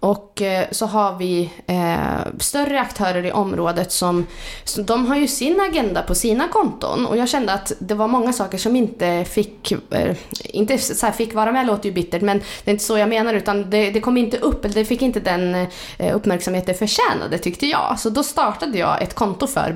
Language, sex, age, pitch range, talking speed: Swedish, female, 20-39, 180-225 Hz, 205 wpm